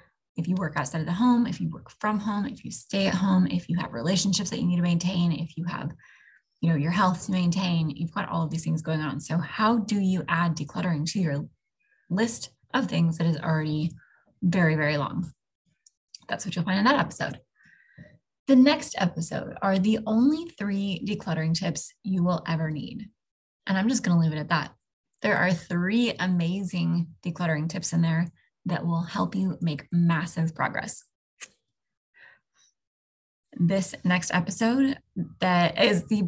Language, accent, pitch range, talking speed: English, American, 165-195 Hz, 180 wpm